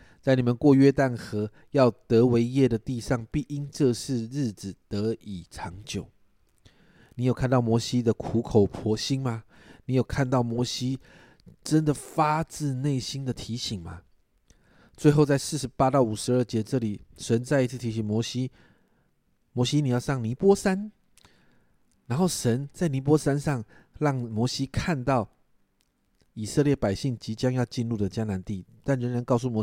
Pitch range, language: 110-145 Hz, Chinese